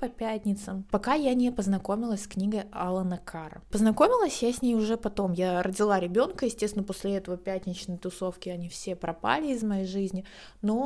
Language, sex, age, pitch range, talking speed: Russian, female, 20-39, 180-210 Hz, 170 wpm